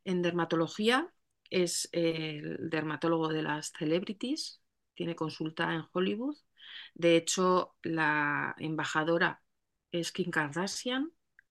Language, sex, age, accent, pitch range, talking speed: Spanish, female, 30-49, Spanish, 155-185 Hz, 100 wpm